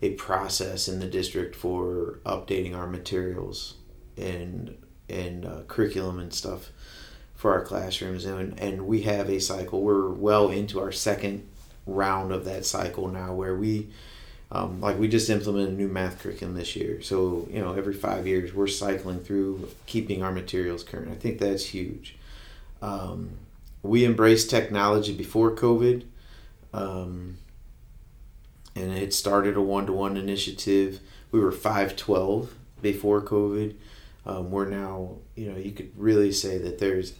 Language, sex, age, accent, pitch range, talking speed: English, male, 30-49, American, 95-105 Hz, 150 wpm